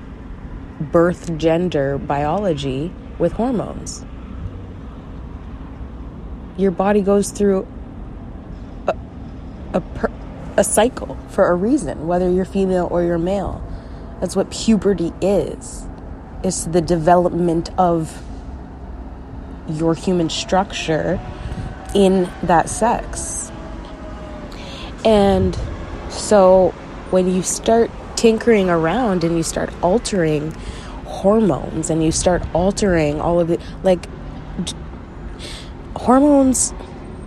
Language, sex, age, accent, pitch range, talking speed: English, female, 20-39, American, 130-195 Hz, 95 wpm